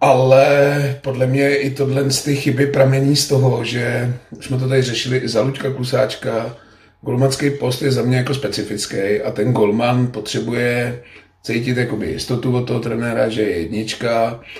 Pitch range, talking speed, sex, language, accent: 110-130 Hz, 165 wpm, male, Czech, native